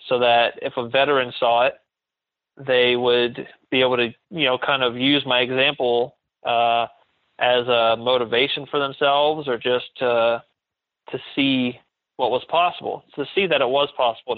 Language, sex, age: English, male, 20-39